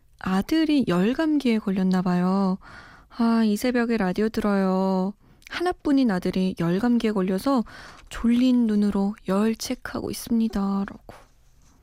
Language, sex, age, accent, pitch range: Korean, female, 20-39, native, 185-240 Hz